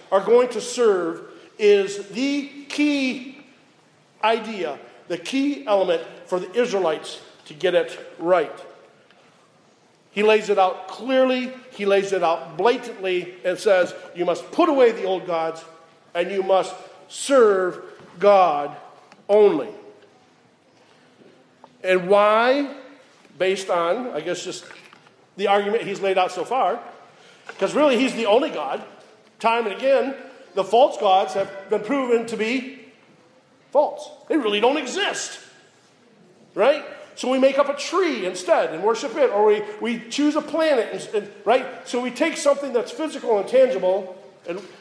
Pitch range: 190-275 Hz